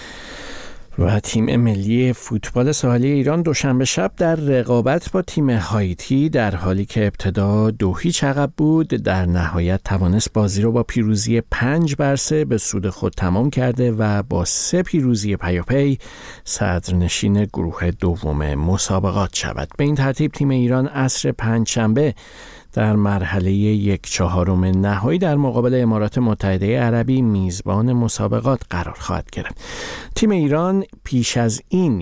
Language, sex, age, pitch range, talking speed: Persian, male, 50-69, 95-125 Hz, 135 wpm